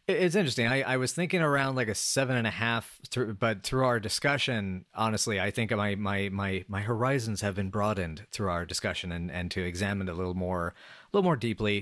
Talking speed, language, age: 225 wpm, English, 40-59